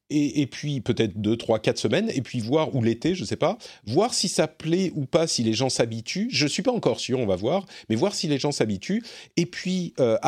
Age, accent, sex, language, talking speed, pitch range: 40-59, French, male, French, 265 wpm, 110-165 Hz